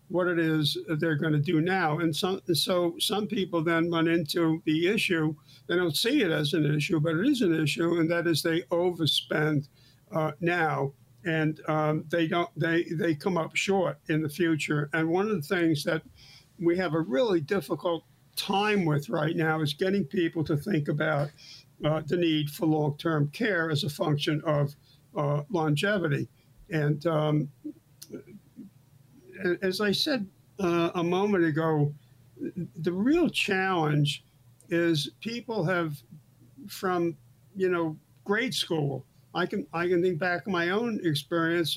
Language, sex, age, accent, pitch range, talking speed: English, male, 60-79, American, 150-180 Hz, 160 wpm